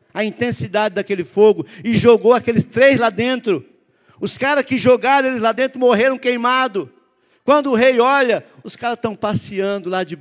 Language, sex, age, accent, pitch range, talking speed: Portuguese, male, 50-69, Brazilian, 200-260 Hz, 170 wpm